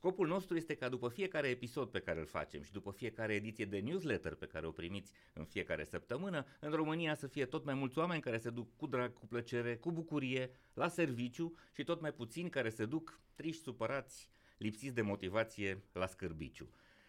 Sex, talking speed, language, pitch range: male, 200 wpm, Romanian, 100-145 Hz